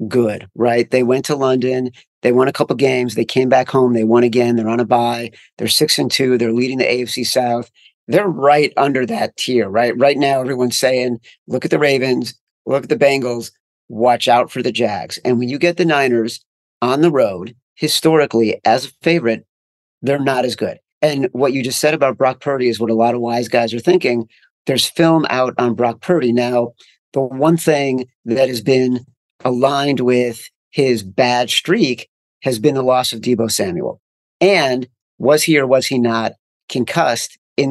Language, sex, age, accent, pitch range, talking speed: English, male, 40-59, American, 120-140 Hz, 195 wpm